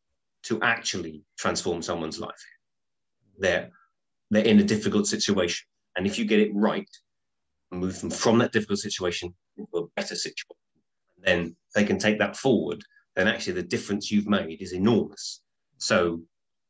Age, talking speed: 30-49, 155 wpm